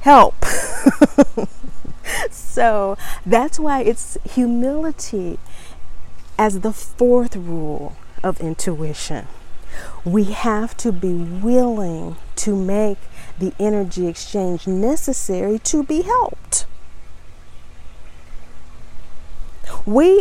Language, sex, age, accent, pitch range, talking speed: English, female, 40-59, American, 160-255 Hz, 80 wpm